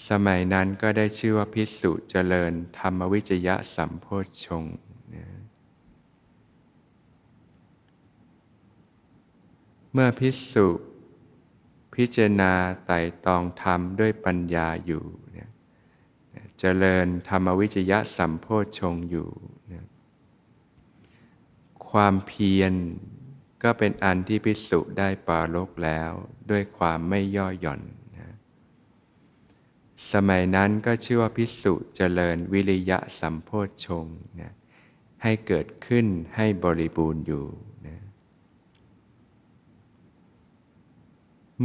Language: Thai